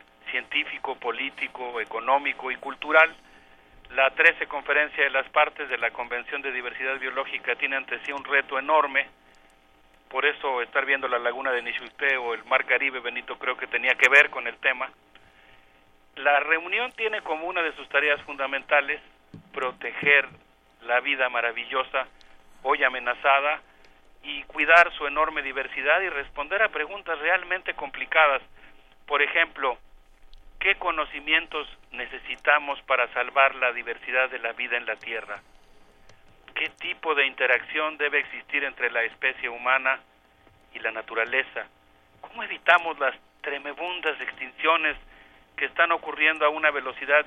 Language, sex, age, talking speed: Spanish, male, 50-69, 140 wpm